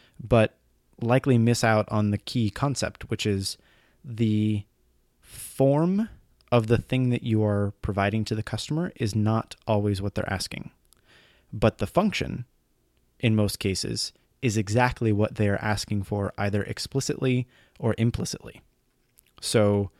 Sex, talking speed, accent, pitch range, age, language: male, 135 wpm, American, 105-120 Hz, 20-39, English